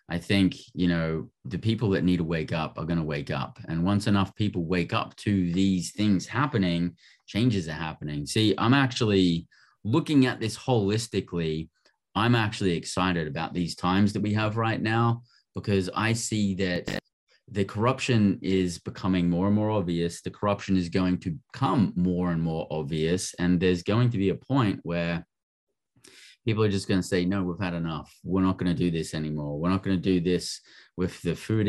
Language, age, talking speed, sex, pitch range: English, 30-49, 195 wpm, male, 85-105 Hz